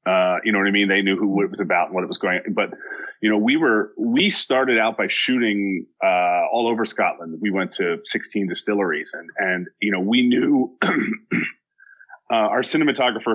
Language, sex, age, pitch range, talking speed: English, male, 30-49, 100-120 Hz, 200 wpm